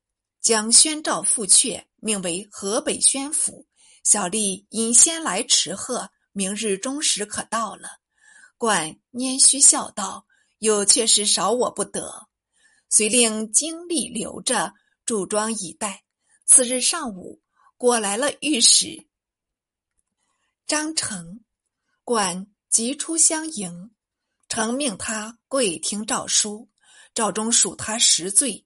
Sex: female